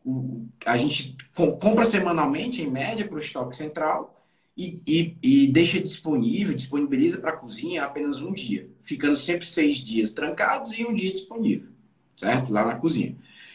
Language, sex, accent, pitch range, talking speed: Portuguese, male, Brazilian, 140-215 Hz, 150 wpm